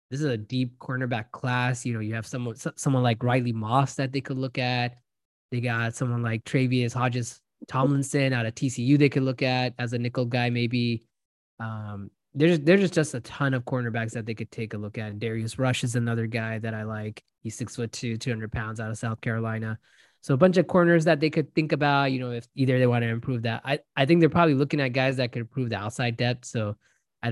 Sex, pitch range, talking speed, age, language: male, 115-130 Hz, 240 wpm, 20-39, English